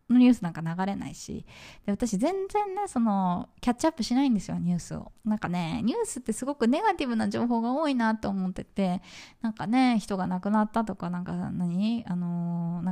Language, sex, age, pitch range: Japanese, female, 20-39, 185-255 Hz